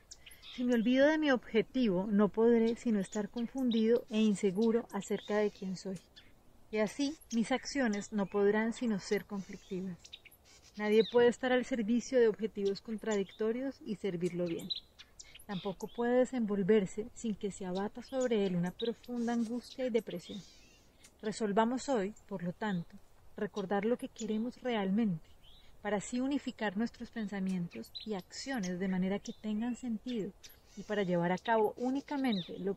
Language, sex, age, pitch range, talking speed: Spanish, female, 30-49, 195-235 Hz, 145 wpm